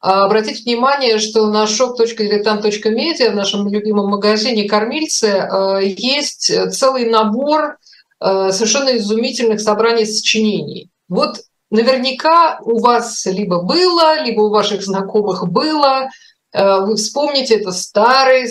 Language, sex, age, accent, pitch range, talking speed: Russian, female, 50-69, native, 195-240 Hz, 105 wpm